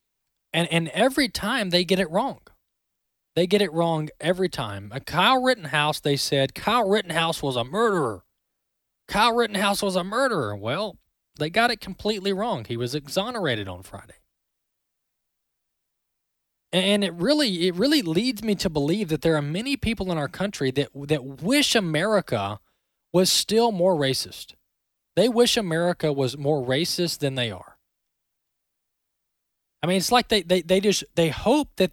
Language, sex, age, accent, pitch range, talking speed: English, male, 20-39, American, 140-210 Hz, 160 wpm